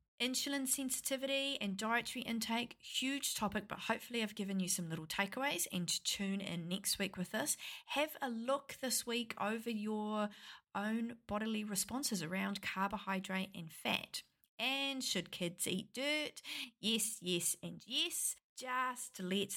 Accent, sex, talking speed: Australian, female, 145 wpm